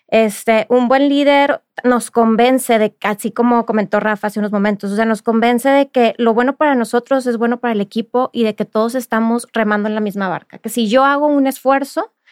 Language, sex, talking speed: Spanish, female, 220 wpm